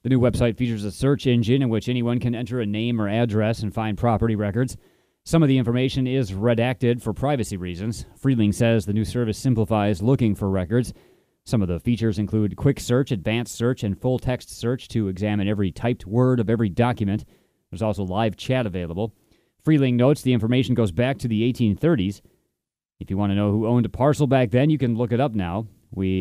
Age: 30-49